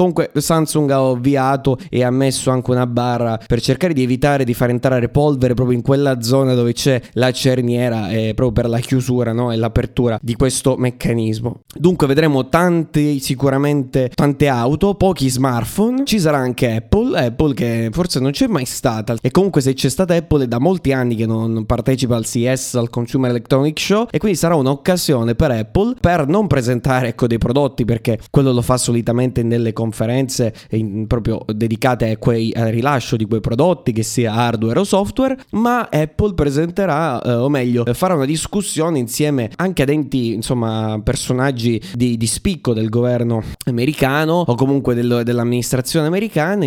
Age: 20-39